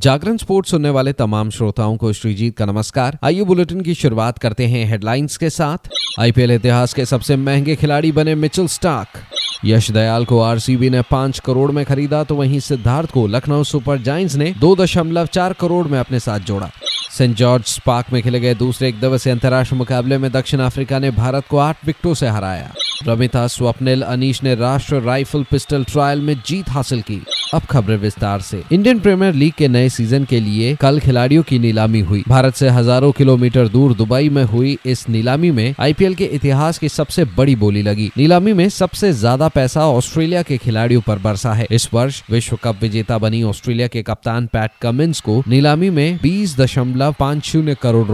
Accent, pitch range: native, 115-150 Hz